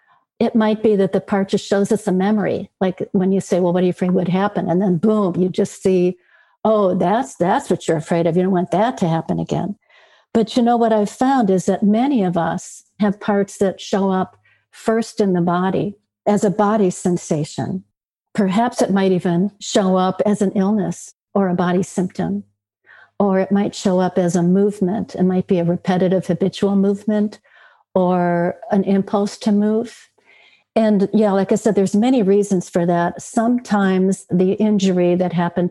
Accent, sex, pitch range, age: American, female, 180-205 Hz, 60-79